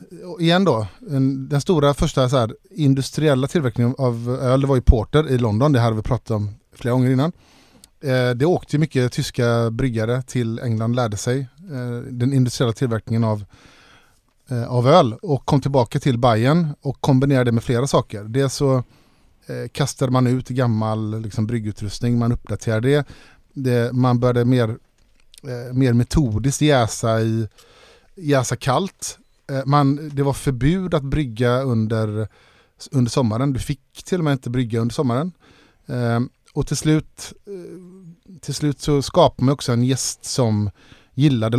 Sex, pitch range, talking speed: male, 115-140 Hz, 155 wpm